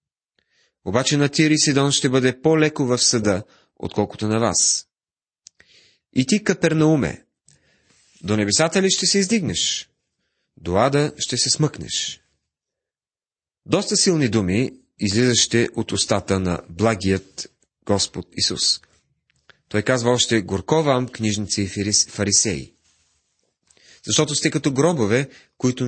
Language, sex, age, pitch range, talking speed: Bulgarian, male, 30-49, 110-150 Hz, 110 wpm